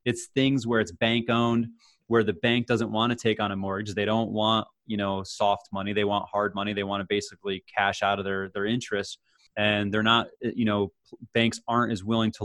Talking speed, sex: 225 wpm, male